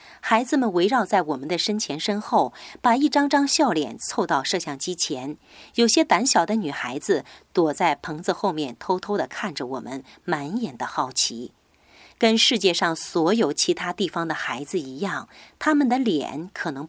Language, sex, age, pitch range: Chinese, female, 30-49, 170-250 Hz